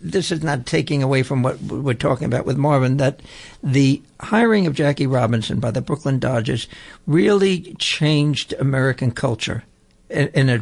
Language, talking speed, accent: English, 165 wpm, American